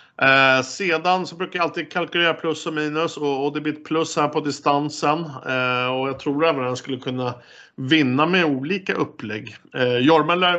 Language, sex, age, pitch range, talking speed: Swedish, male, 50-69, 125-150 Hz, 185 wpm